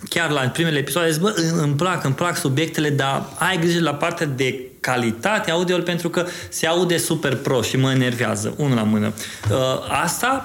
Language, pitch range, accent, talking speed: Romanian, 120-155 Hz, native, 185 wpm